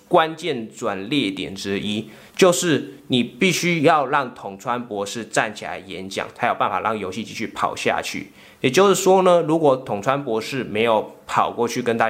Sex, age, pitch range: male, 20-39, 105-135 Hz